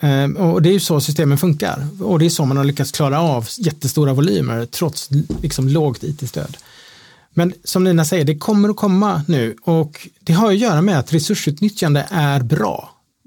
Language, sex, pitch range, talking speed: Swedish, male, 140-170 Hz, 185 wpm